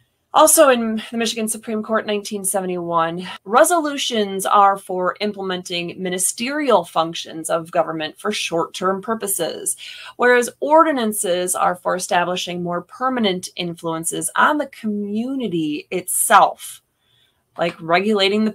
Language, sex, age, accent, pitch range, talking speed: English, female, 20-39, American, 185-245 Hz, 105 wpm